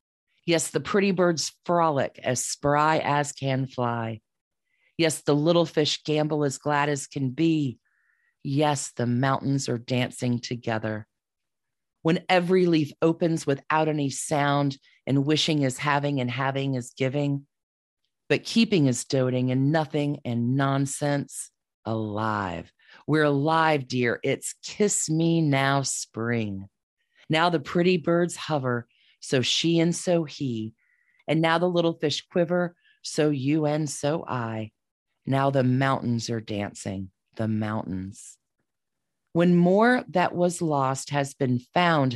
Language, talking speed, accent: English, 135 wpm, American